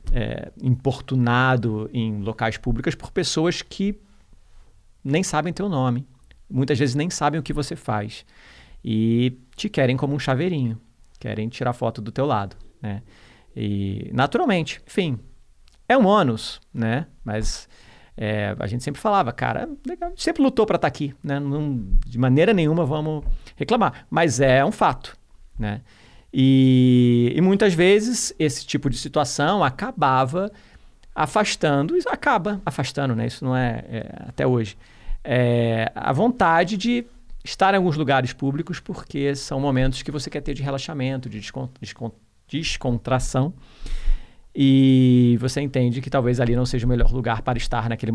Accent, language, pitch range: Brazilian, Portuguese, 120-150 Hz